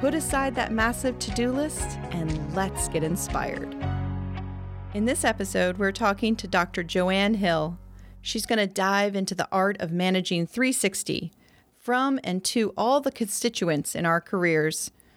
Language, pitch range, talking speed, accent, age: English, 175-225 Hz, 150 wpm, American, 40-59